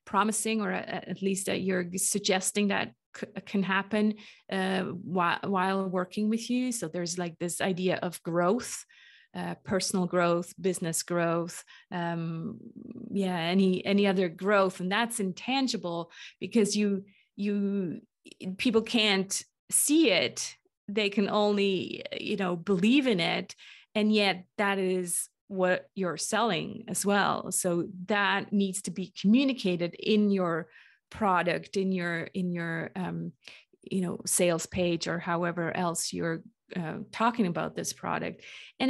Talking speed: 140 wpm